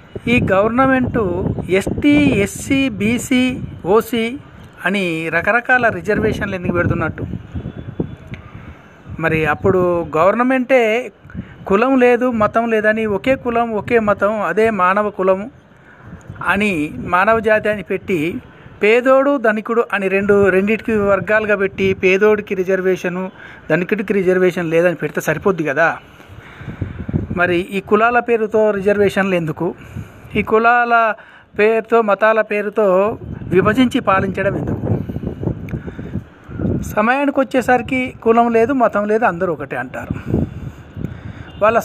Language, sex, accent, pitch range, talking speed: Telugu, male, native, 190-235 Hz, 95 wpm